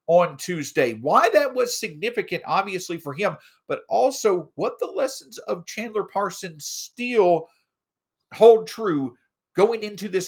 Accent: American